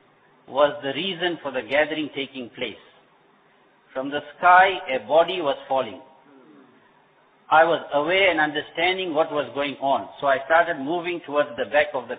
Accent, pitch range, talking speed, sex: Indian, 140-180 Hz, 160 wpm, male